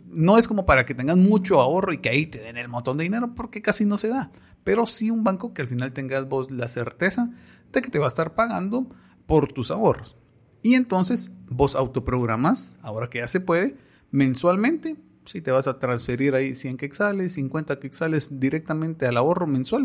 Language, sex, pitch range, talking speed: Spanish, male, 130-205 Hz, 205 wpm